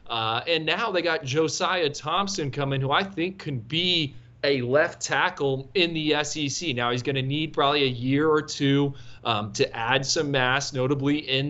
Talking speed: 190 wpm